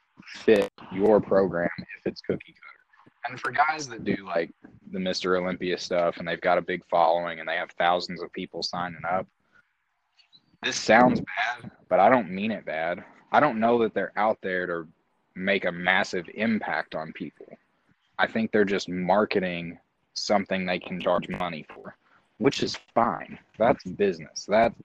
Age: 20-39